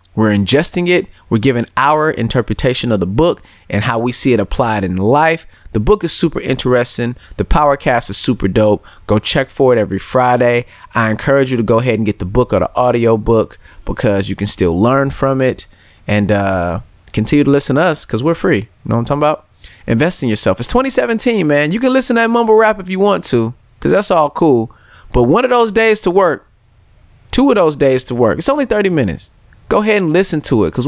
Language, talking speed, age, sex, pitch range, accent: English, 225 wpm, 30-49, male, 110-165 Hz, American